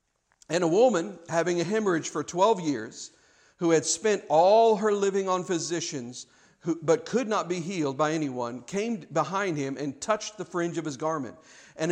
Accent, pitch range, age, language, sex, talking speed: American, 155-200 Hz, 50-69, English, male, 175 wpm